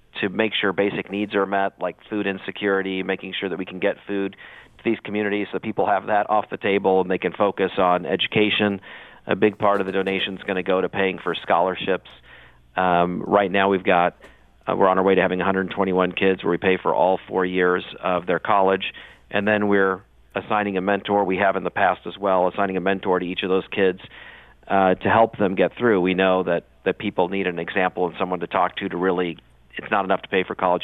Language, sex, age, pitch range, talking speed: English, male, 40-59, 90-100 Hz, 235 wpm